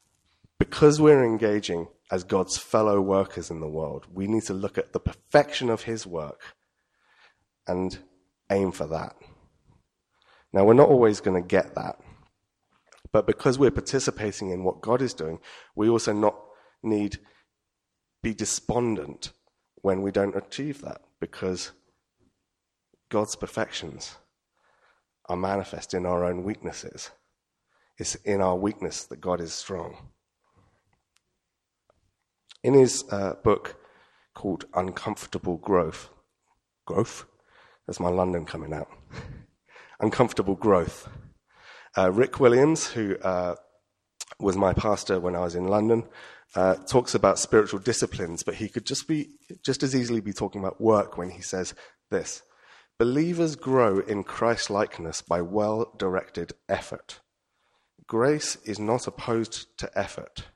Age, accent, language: 30-49, British, English